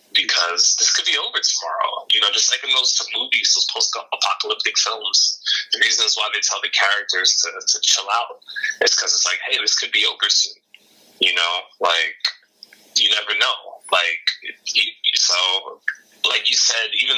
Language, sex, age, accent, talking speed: English, male, 20-39, American, 180 wpm